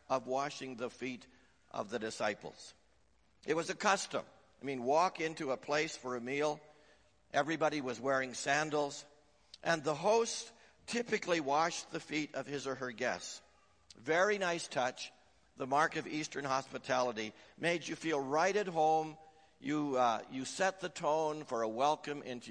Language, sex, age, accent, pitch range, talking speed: English, male, 60-79, American, 110-150 Hz, 160 wpm